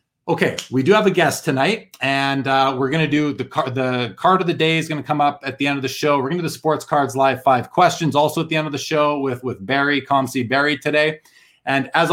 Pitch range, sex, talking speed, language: 130-160 Hz, male, 260 wpm, English